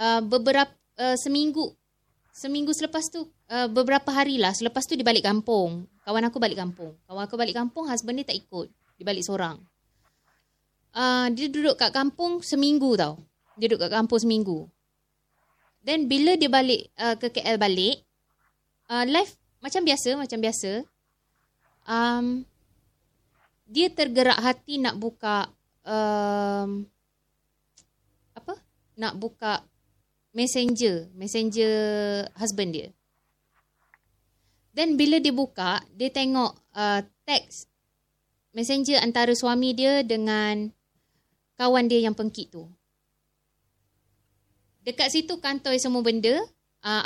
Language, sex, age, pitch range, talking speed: Malay, female, 20-39, 210-275 Hz, 120 wpm